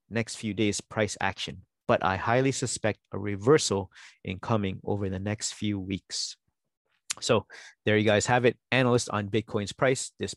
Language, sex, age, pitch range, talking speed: English, male, 30-49, 105-125 Hz, 170 wpm